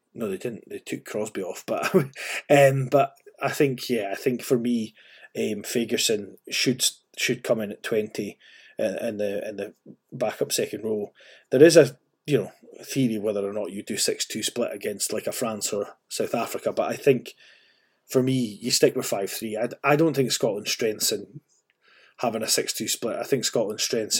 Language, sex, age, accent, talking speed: English, male, 30-49, British, 200 wpm